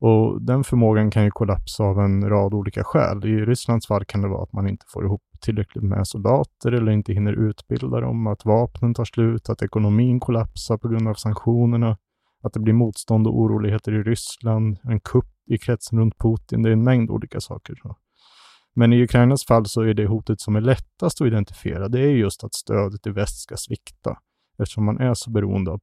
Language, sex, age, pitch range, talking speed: English, male, 30-49, 105-115 Hz, 205 wpm